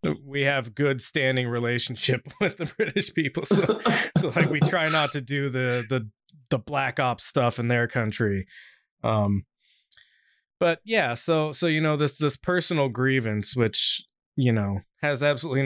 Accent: American